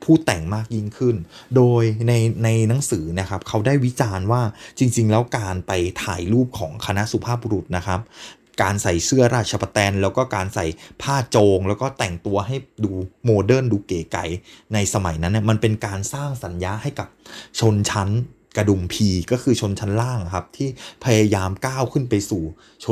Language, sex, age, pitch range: Thai, male, 20-39, 100-125 Hz